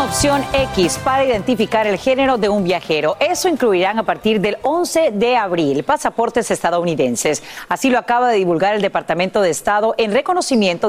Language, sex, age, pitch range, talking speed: Spanish, female, 40-59, 180-245 Hz, 165 wpm